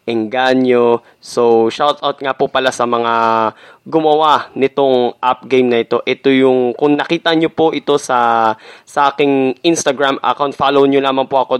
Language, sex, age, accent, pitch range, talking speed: Filipino, male, 20-39, native, 120-150 Hz, 165 wpm